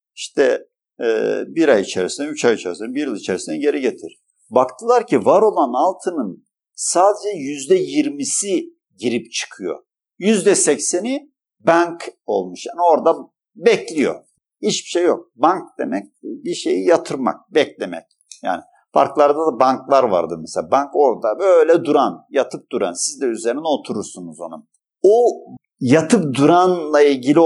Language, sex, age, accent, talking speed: Turkish, male, 50-69, native, 130 wpm